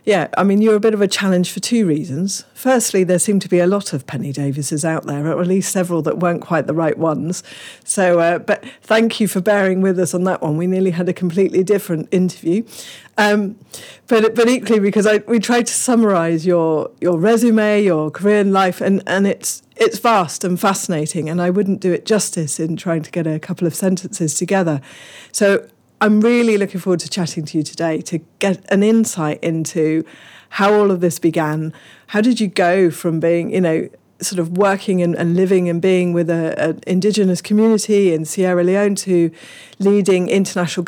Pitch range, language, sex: 165-205 Hz, English, female